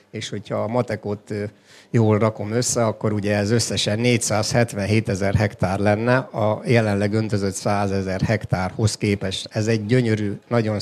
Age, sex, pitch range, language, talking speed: 50-69, male, 100-115 Hz, Hungarian, 145 wpm